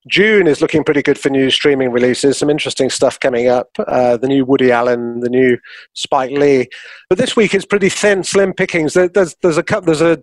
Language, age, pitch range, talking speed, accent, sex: English, 30-49, 140-180 Hz, 215 wpm, British, male